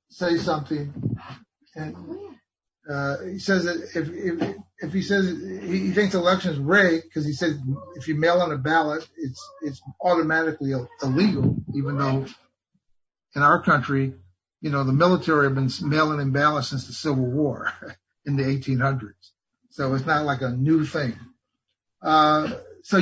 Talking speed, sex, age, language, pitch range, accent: 155 wpm, male, 50-69, English, 130-165 Hz, American